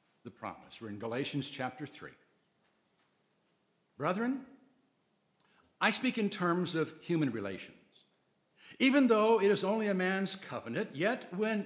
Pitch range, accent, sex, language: 155-230 Hz, American, male, English